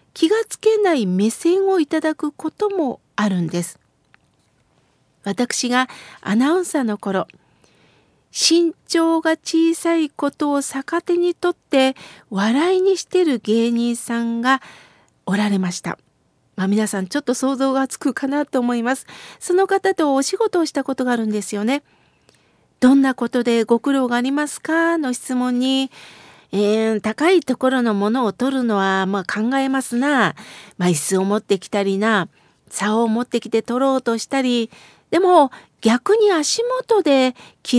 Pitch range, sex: 215-305 Hz, female